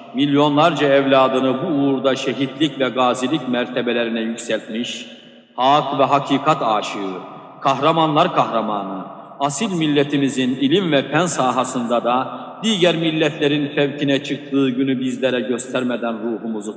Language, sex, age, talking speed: Turkish, male, 50-69, 105 wpm